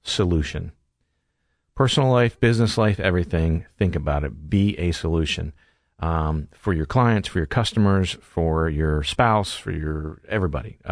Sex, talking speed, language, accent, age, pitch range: male, 135 wpm, English, American, 40-59, 80-105 Hz